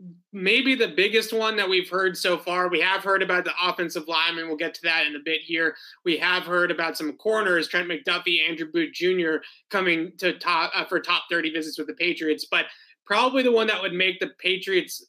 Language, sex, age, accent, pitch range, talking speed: English, male, 20-39, American, 165-195 Hz, 210 wpm